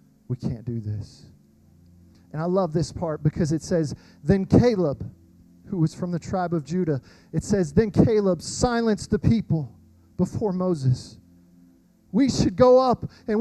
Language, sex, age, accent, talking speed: English, male, 40-59, American, 155 wpm